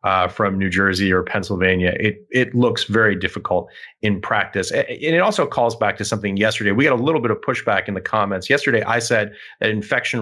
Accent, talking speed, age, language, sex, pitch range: American, 210 wpm, 30-49, English, male, 100-120 Hz